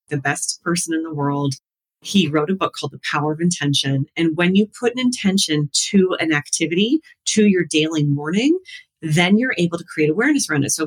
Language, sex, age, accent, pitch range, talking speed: English, female, 30-49, American, 145-195 Hz, 205 wpm